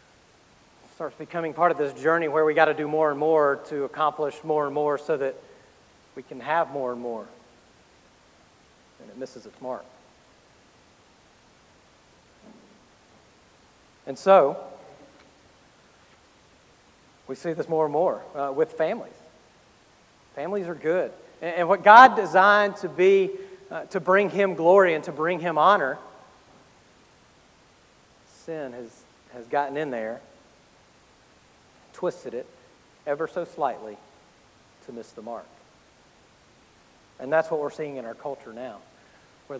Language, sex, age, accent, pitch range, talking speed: English, male, 40-59, American, 150-190 Hz, 135 wpm